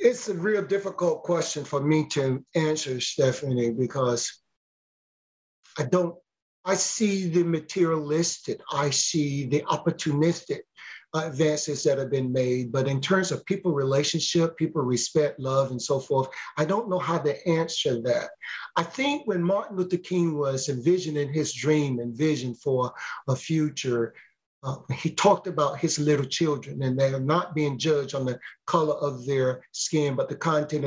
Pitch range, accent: 135-175 Hz, American